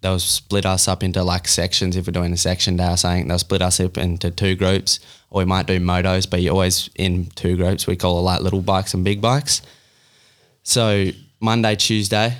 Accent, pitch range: Australian, 90-100 Hz